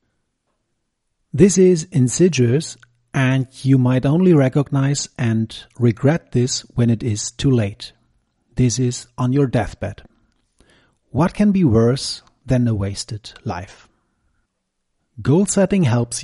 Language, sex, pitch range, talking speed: English, male, 115-145 Hz, 120 wpm